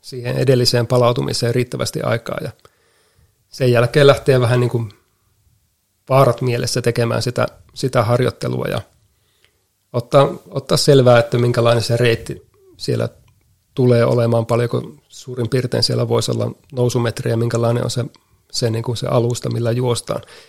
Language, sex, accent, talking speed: Finnish, male, native, 135 wpm